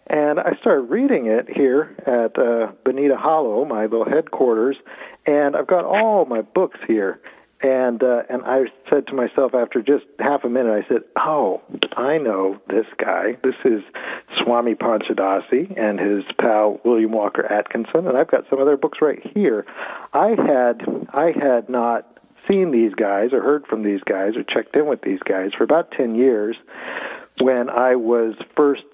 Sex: male